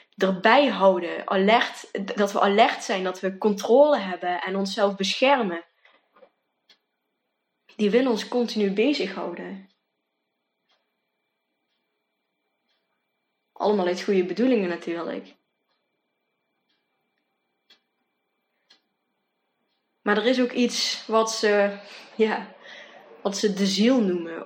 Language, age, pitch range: Dutch, 20-39, 175-205 Hz